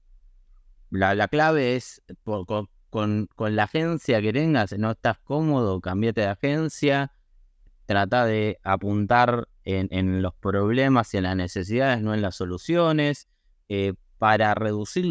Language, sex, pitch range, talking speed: Spanish, male, 100-130 Hz, 140 wpm